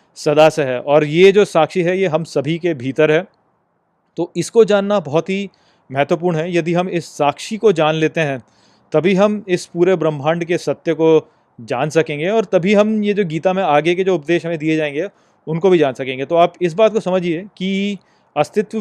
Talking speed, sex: 205 wpm, male